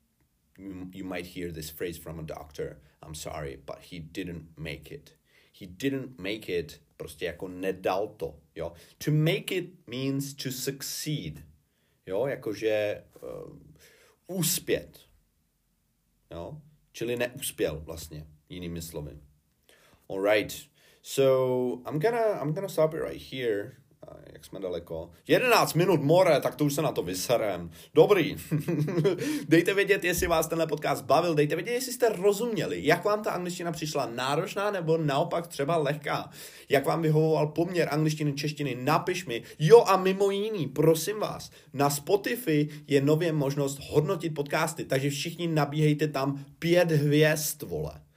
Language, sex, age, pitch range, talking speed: Czech, male, 40-59, 115-165 Hz, 140 wpm